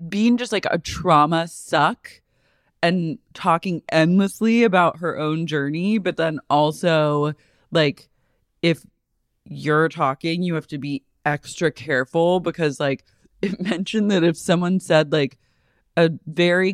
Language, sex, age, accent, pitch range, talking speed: English, female, 20-39, American, 150-185 Hz, 135 wpm